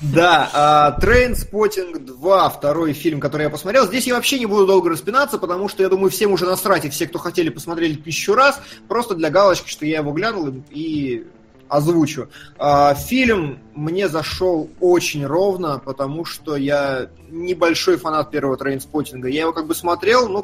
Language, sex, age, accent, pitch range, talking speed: Russian, male, 20-39, native, 150-205 Hz, 165 wpm